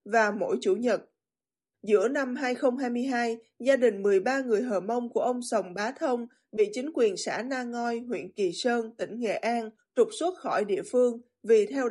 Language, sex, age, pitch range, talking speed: Vietnamese, female, 20-39, 225-300 Hz, 185 wpm